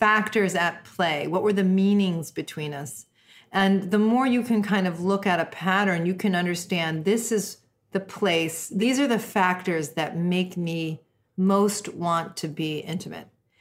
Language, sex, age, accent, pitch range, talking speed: English, female, 40-59, American, 165-195 Hz, 170 wpm